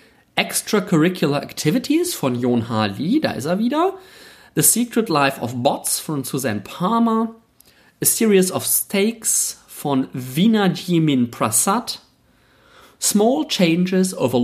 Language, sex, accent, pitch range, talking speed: German, male, German, 130-190 Hz, 115 wpm